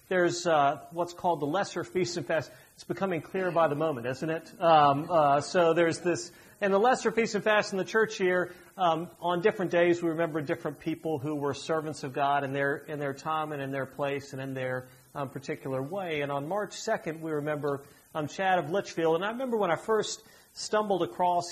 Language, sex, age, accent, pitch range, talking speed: English, male, 40-59, American, 145-180 Hz, 215 wpm